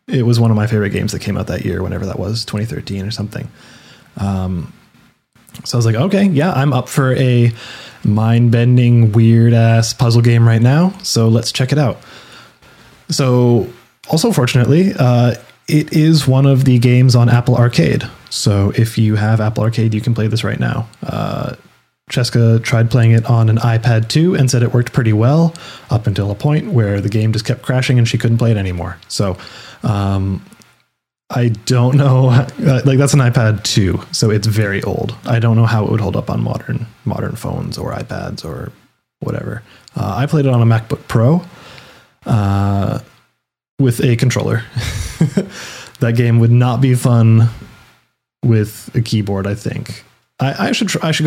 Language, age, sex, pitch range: English, 20-39, male, 110-130 Hz